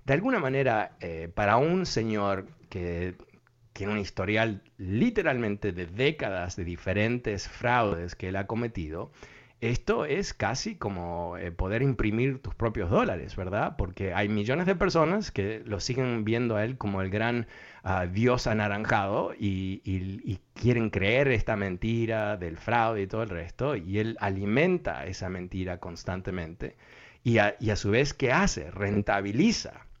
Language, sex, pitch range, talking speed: Spanish, male, 95-120 Hz, 155 wpm